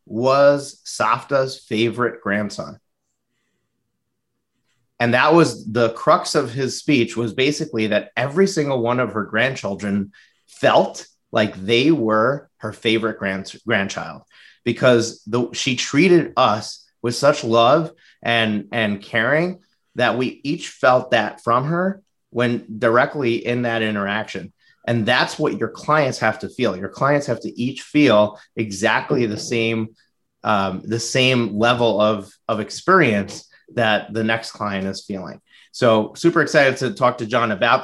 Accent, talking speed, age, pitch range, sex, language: American, 145 wpm, 30-49, 110-145 Hz, male, English